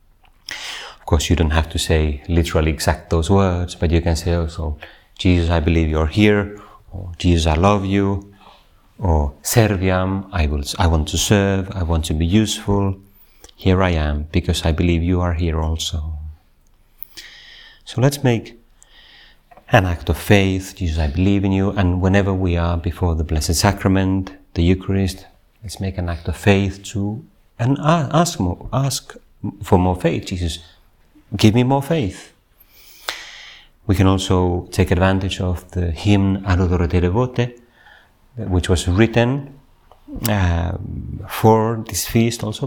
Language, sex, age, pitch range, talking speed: Finnish, male, 30-49, 85-105 Hz, 150 wpm